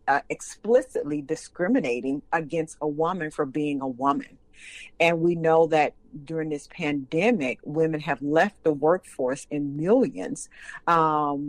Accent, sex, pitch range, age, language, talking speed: American, female, 145-165 Hz, 50-69, English, 125 wpm